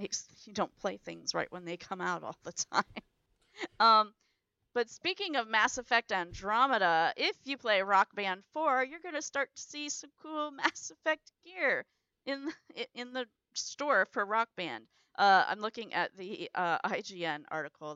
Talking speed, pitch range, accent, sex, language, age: 170 wpm, 170-245 Hz, American, female, English, 40-59